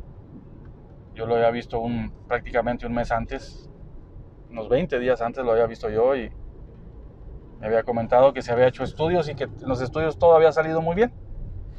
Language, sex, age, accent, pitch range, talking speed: Spanish, male, 20-39, Mexican, 110-135 Hz, 180 wpm